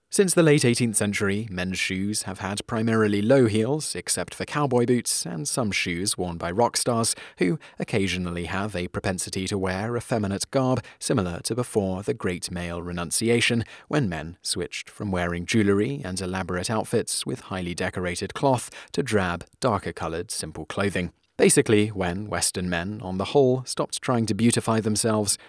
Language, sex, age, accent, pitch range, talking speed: English, male, 30-49, British, 90-120 Hz, 160 wpm